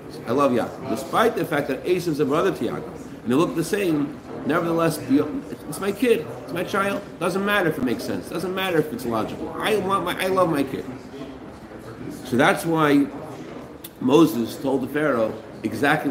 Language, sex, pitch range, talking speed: English, male, 130-180 Hz, 195 wpm